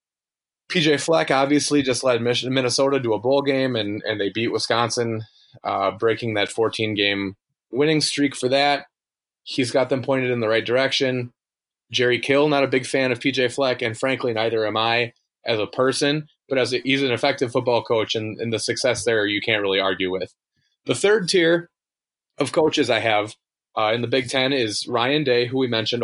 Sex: male